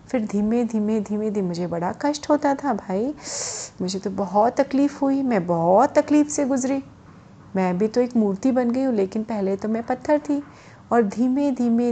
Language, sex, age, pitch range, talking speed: Hindi, female, 30-49, 205-280 Hz, 195 wpm